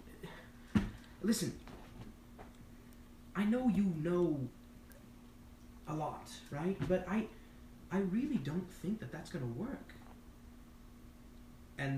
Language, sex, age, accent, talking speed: English, male, 20-39, American, 100 wpm